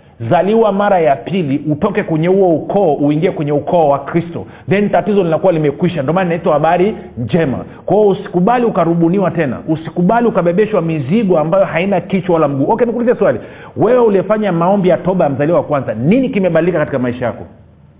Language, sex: Swahili, male